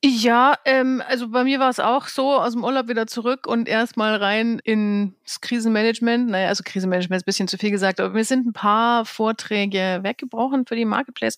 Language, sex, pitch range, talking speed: English, female, 190-245 Hz, 200 wpm